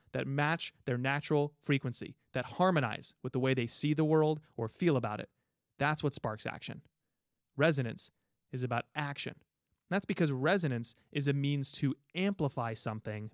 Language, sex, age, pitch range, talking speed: English, male, 30-49, 120-155 Hz, 160 wpm